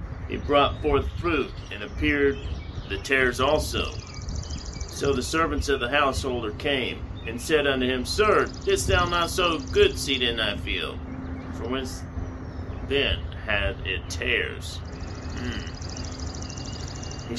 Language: English